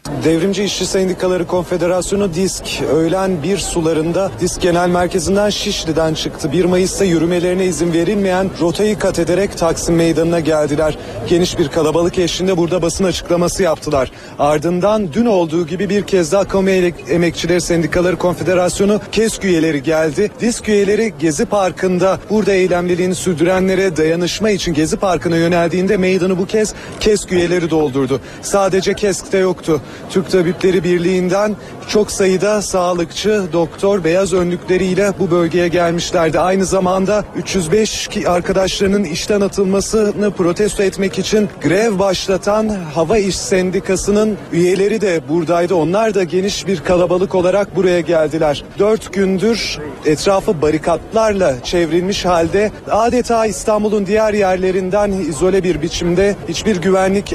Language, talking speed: Turkish, 125 wpm